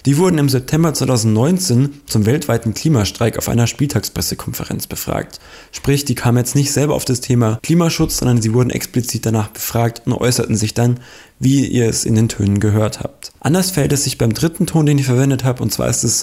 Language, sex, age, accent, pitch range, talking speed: German, male, 20-39, German, 115-140 Hz, 205 wpm